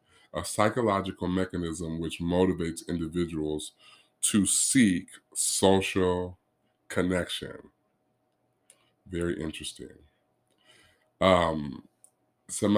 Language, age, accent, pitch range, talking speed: English, 30-49, American, 80-100 Hz, 65 wpm